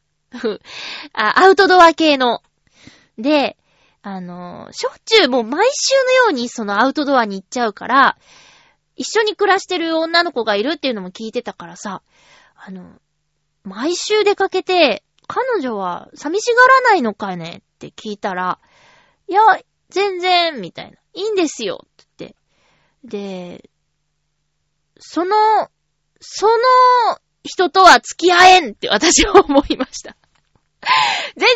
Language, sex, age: Japanese, female, 20-39